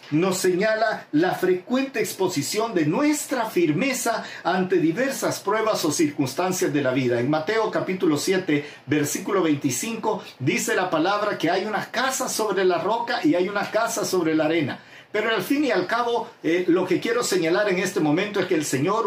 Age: 50-69